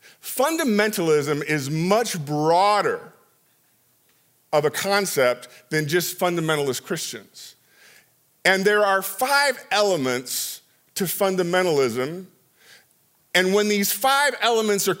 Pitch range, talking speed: 160-215 Hz, 95 wpm